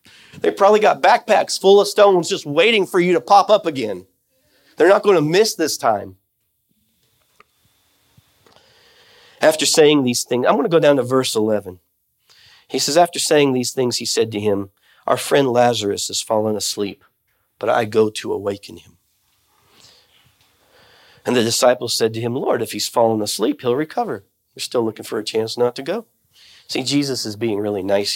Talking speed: 180 wpm